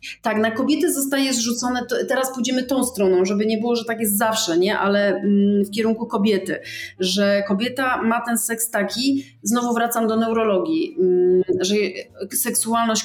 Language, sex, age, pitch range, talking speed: Polish, female, 30-49, 195-230 Hz, 155 wpm